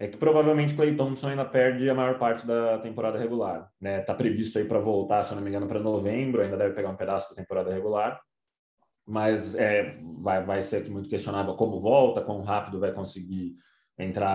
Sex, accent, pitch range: male, Brazilian, 105-135 Hz